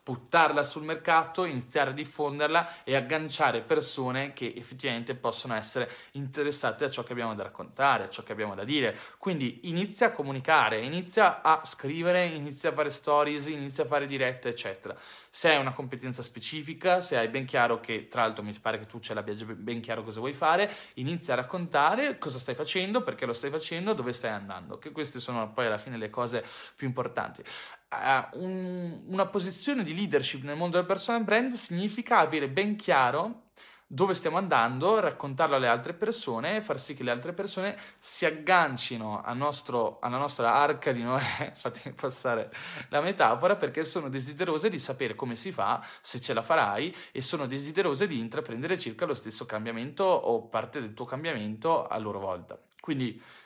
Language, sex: Italian, male